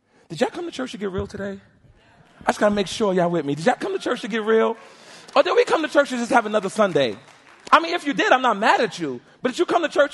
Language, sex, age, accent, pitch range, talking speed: English, male, 30-49, American, 170-255 Hz, 315 wpm